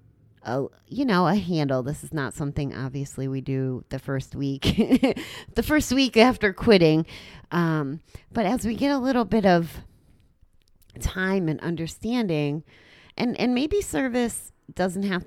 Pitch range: 130-160 Hz